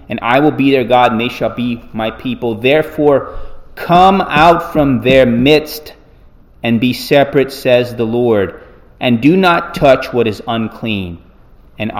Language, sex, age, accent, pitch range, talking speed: English, male, 30-49, American, 110-135 Hz, 160 wpm